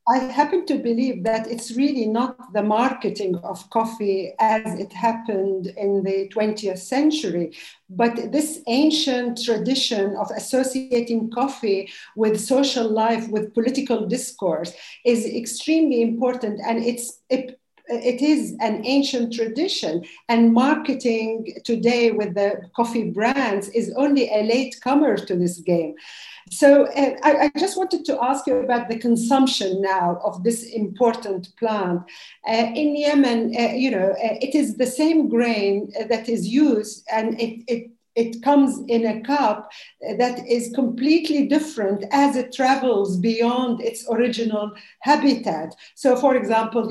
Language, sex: English, female